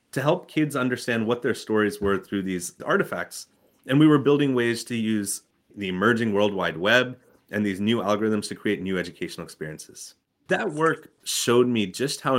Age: 30-49